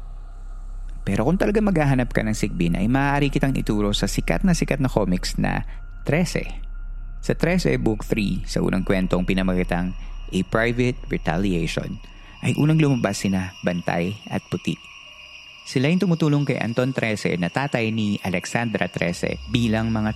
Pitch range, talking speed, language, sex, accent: 95-125 Hz, 150 wpm, Filipino, male, native